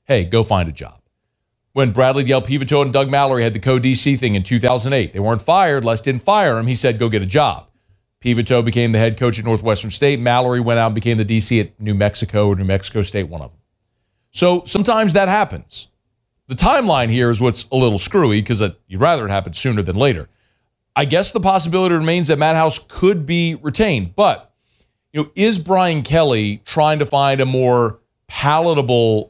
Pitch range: 110-155 Hz